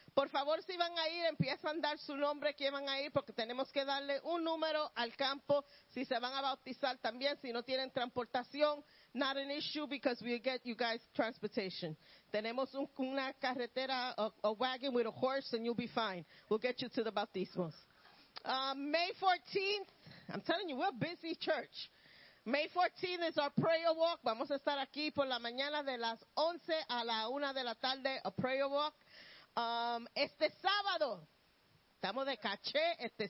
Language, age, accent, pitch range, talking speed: Spanish, 40-59, American, 255-315 Hz, 185 wpm